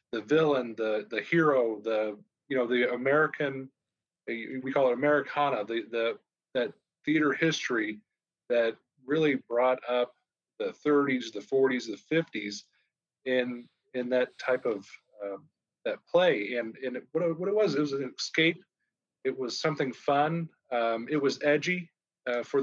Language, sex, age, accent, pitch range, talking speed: English, male, 30-49, American, 120-145 Hz, 155 wpm